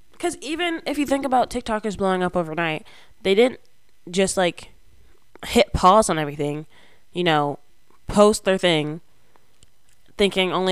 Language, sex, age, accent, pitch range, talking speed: English, female, 10-29, American, 150-185 Hz, 140 wpm